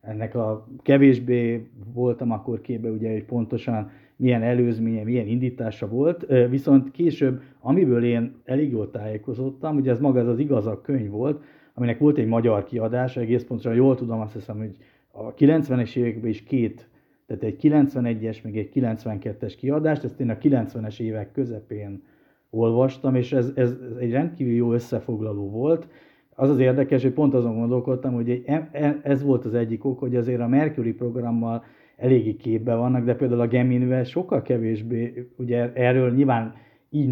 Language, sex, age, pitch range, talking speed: Hungarian, male, 50-69, 115-135 Hz, 160 wpm